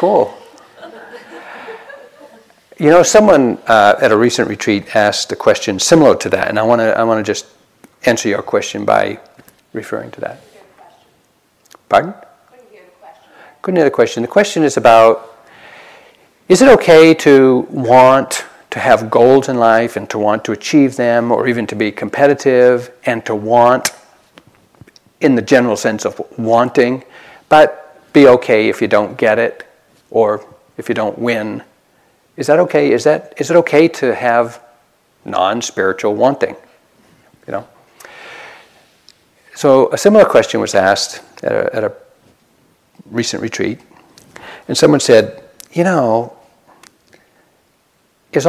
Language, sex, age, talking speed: English, male, 50-69, 135 wpm